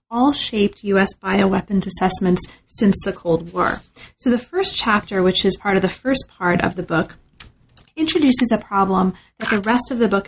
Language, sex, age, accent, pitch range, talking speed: English, female, 30-49, American, 190-230 Hz, 185 wpm